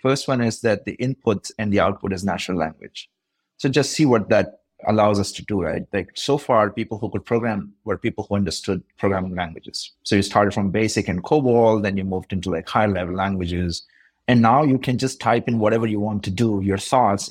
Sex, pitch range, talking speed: male, 100-120 Hz, 220 wpm